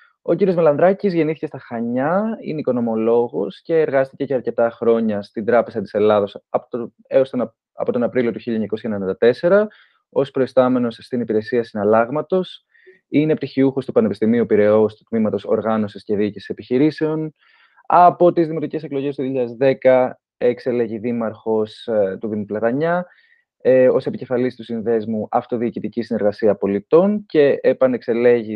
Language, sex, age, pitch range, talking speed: Greek, male, 20-39, 110-170 Hz, 125 wpm